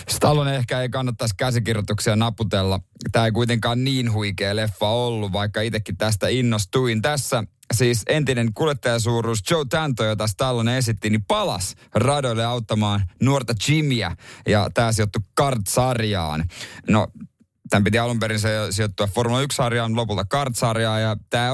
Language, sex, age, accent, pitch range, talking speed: Finnish, male, 30-49, native, 105-135 Hz, 135 wpm